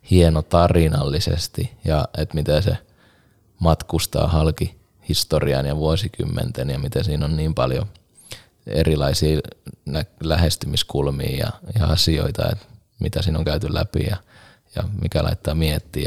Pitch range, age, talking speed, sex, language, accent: 80-100 Hz, 20-39, 120 wpm, male, Finnish, native